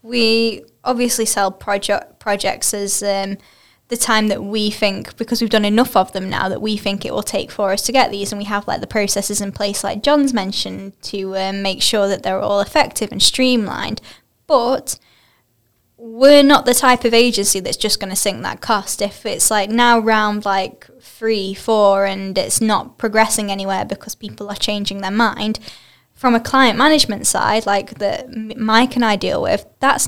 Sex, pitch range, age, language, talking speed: female, 200-235 Hz, 10-29, English, 195 wpm